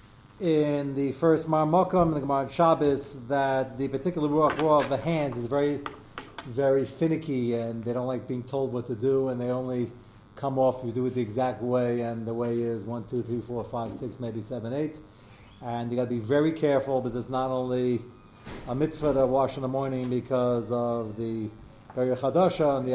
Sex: male